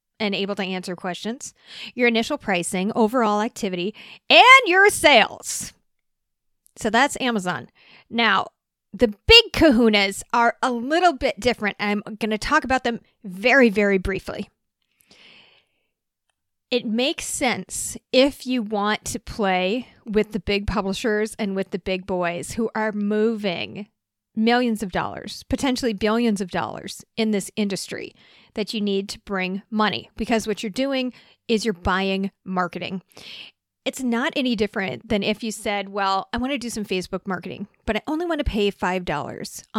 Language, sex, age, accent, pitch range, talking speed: English, female, 40-59, American, 195-240 Hz, 150 wpm